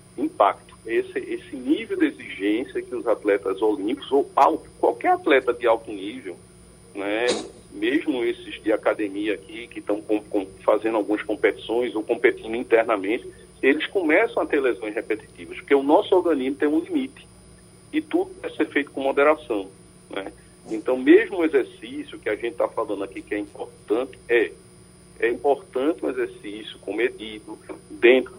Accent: Brazilian